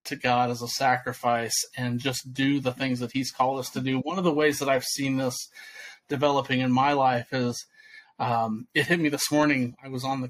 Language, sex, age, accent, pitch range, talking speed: English, male, 30-49, American, 125-140 Hz, 225 wpm